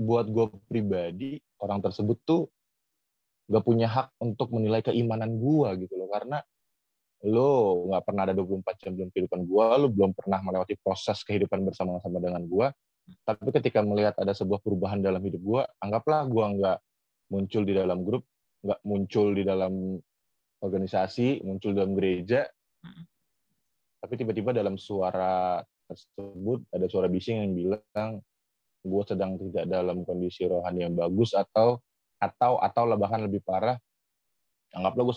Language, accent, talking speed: Indonesian, native, 145 wpm